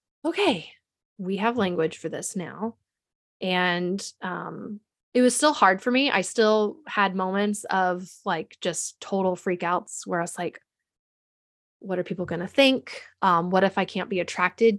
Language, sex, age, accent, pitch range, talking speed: English, female, 20-39, American, 180-225 Hz, 160 wpm